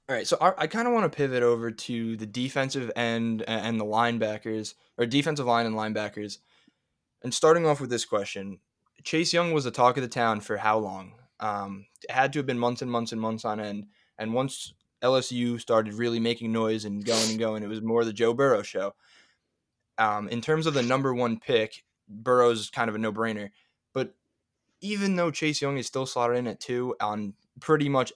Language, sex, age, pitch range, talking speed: English, male, 10-29, 110-135 Hz, 210 wpm